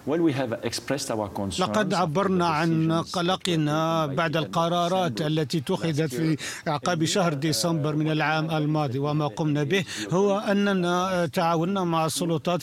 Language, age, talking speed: Arabic, 50-69, 110 wpm